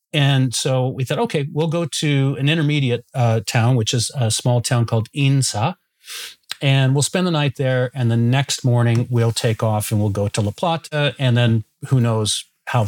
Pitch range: 115-140 Hz